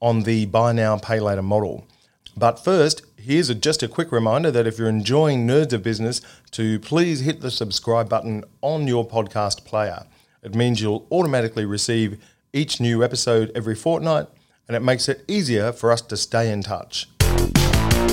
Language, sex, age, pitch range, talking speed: English, male, 40-59, 105-130 Hz, 170 wpm